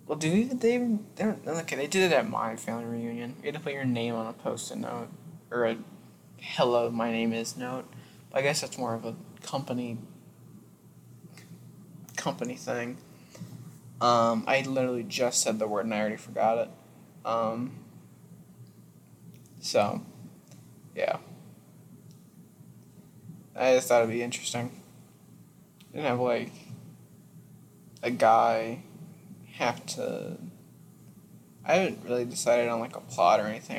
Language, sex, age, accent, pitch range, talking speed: English, male, 20-39, American, 115-140 Hz, 135 wpm